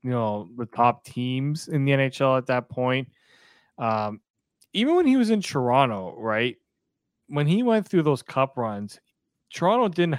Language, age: English, 20-39